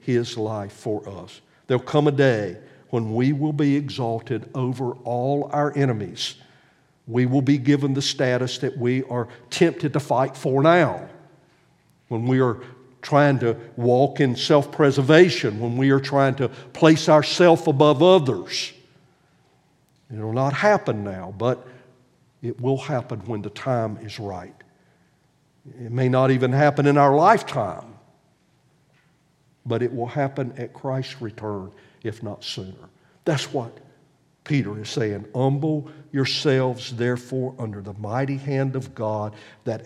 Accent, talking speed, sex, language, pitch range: American, 145 wpm, male, English, 115-140 Hz